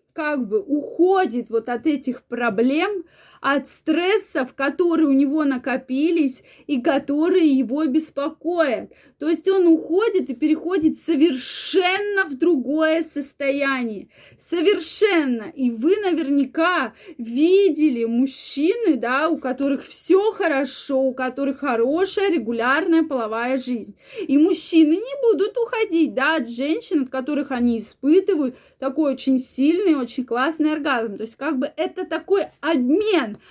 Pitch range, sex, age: 265-335 Hz, female, 20-39